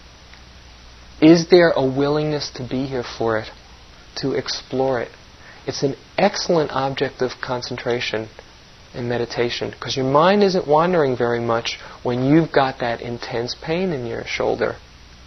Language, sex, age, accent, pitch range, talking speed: English, male, 40-59, American, 115-135 Hz, 140 wpm